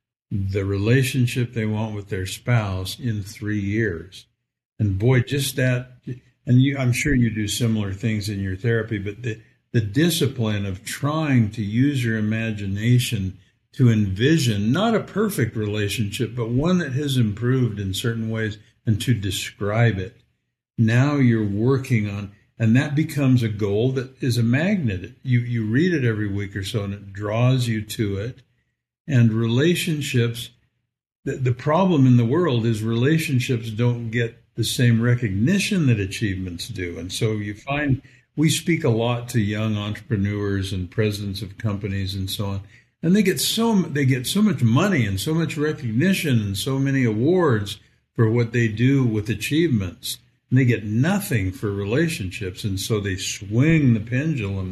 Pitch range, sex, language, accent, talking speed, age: 105-130 Hz, male, English, American, 165 wpm, 60-79